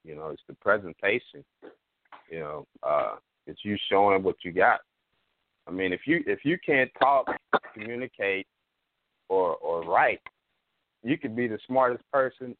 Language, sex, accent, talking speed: English, male, American, 150 wpm